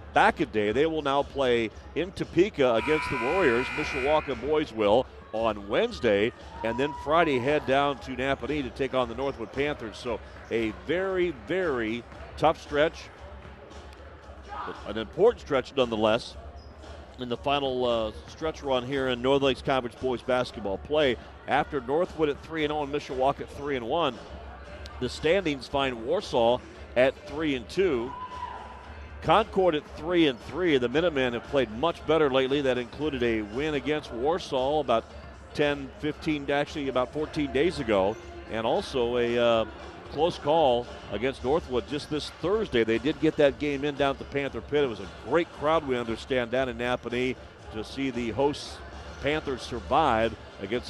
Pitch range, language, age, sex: 110-145 Hz, English, 40-59, male